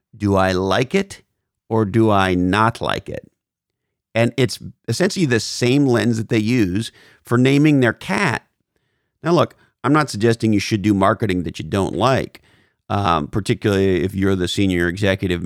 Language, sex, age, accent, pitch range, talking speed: English, male, 50-69, American, 95-120 Hz, 165 wpm